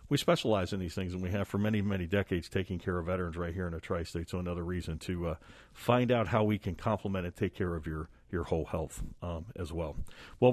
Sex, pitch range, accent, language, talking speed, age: male, 90-110 Hz, American, English, 250 wpm, 50-69